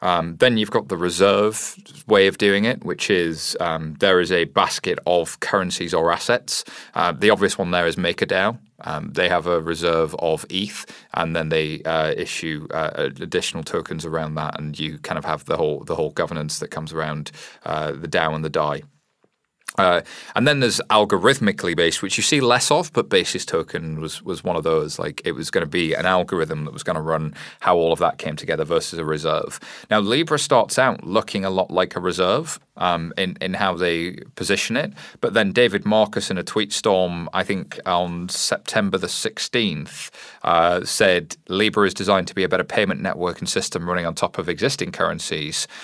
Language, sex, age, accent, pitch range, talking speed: English, male, 30-49, British, 80-100 Hz, 205 wpm